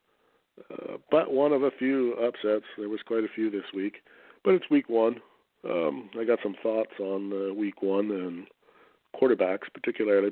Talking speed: 175 wpm